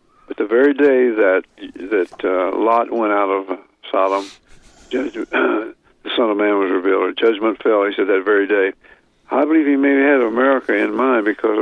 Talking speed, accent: 185 wpm, American